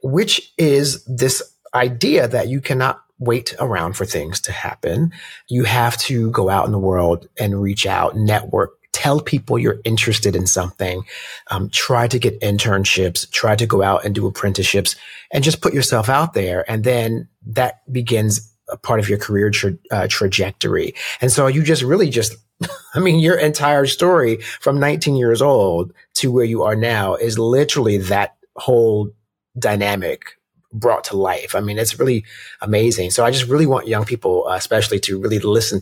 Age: 30-49